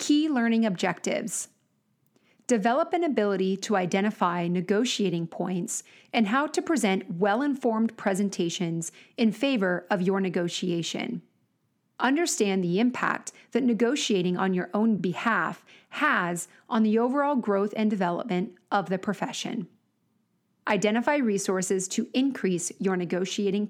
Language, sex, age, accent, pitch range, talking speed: English, female, 30-49, American, 190-250 Hz, 115 wpm